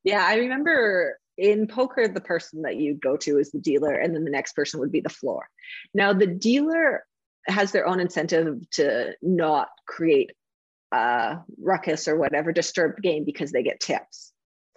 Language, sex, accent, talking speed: English, female, American, 175 wpm